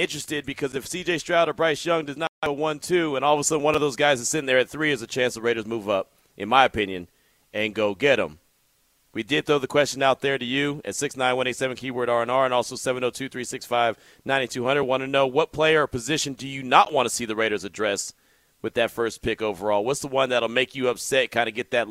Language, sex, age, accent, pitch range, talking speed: English, male, 30-49, American, 115-150 Hz, 280 wpm